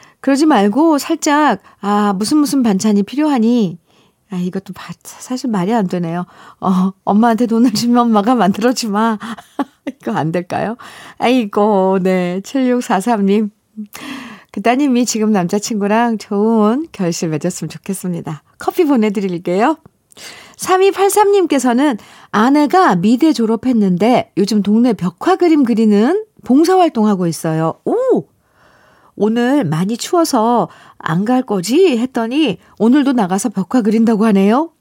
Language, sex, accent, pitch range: Korean, female, native, 190-260 Hz